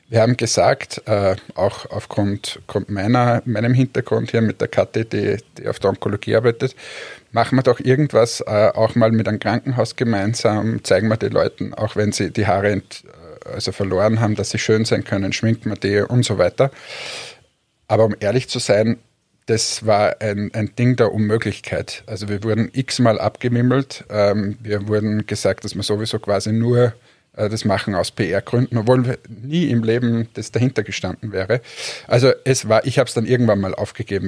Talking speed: 170 wpm